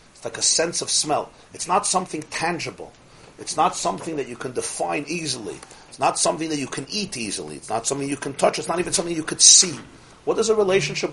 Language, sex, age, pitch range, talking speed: English, male, 40-59, 145-180 Hz, 225 wpm